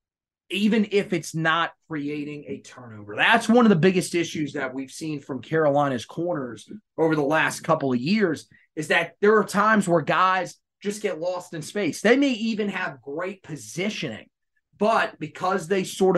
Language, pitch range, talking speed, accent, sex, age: English, 145-180 Hz, 175 wpm, American, male, 30-49